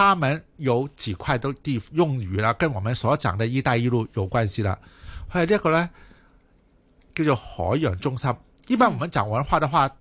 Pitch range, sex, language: 110-155 Hz, male, Chinese